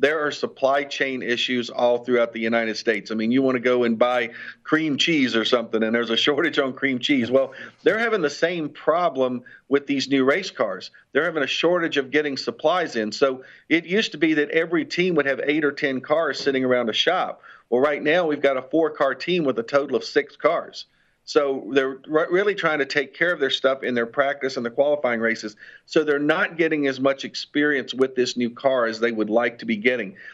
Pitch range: 130-150 Hz